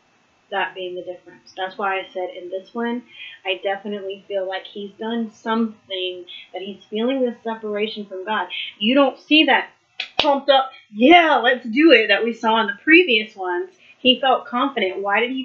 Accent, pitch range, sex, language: American, 190-240 Hz, female, English